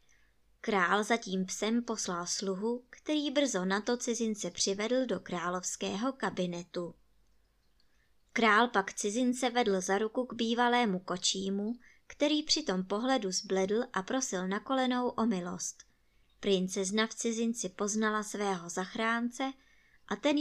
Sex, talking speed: male, 125 wpm